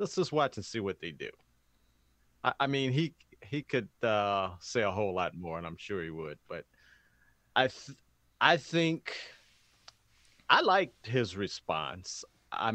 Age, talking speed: 40-59, 165 wpm